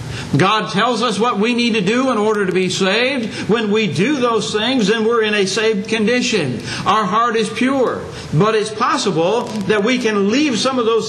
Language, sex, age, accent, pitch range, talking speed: English, male, 60-79, American, 190-240 Hz, 205 wpm